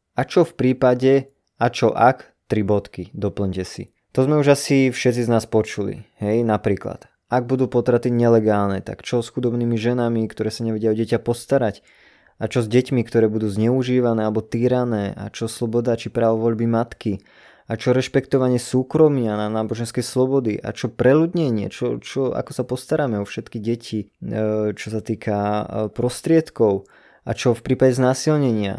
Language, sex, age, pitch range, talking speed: Slovak, male, 20-39, 105-125 Hz, 165 wpm